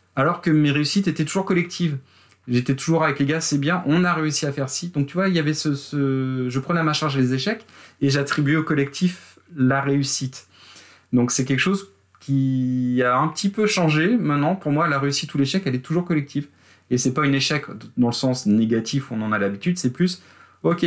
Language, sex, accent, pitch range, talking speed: French, male, French, 125-155 Hz, 230 wpm